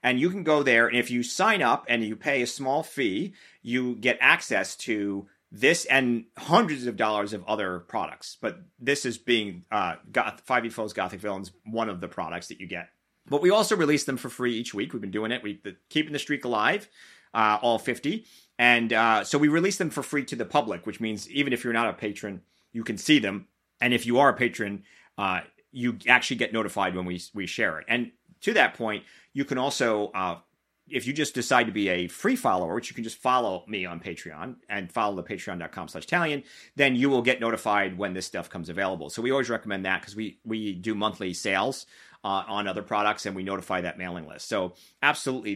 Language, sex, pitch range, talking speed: English, male, 100-125 Hz, 225 wpm